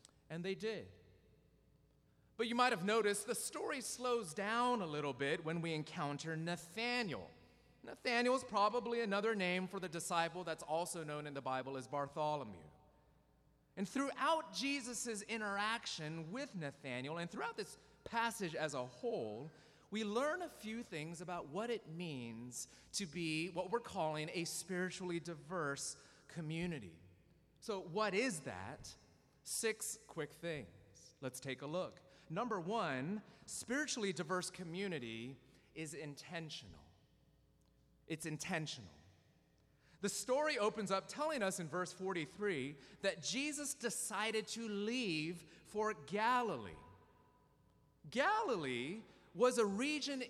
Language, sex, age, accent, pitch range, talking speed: English, male, 30-49, American, 155-220 Hz, 125 wpm